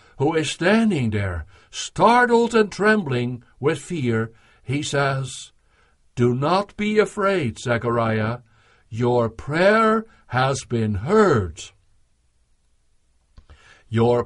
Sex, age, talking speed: male, 60-79, 95 wpm